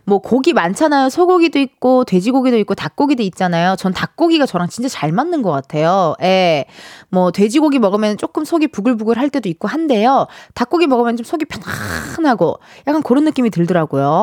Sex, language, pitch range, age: female, Korean, 190-300 Hz, 20-39